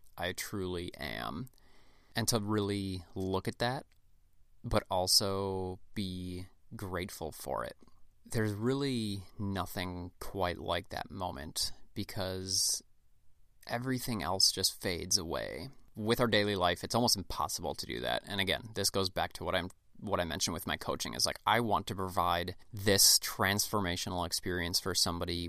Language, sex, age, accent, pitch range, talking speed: English, male, 30-49, American, 90-110 Hz, 150 wpm